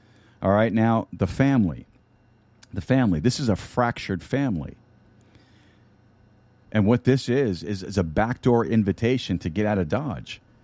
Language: English